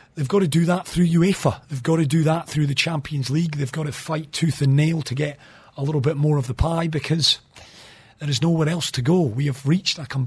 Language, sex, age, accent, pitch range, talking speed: English, male, 40-59, British, 130-165 Hz, 255 wpm